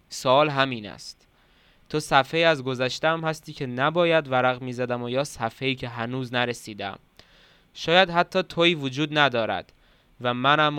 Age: 20-39